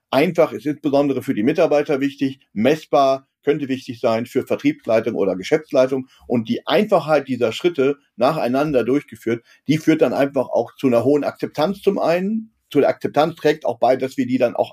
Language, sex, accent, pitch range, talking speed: German, male, German, 115-145 Hz, 175 wpm